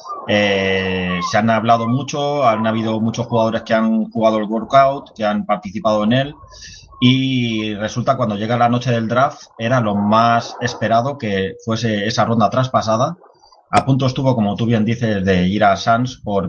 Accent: Spanish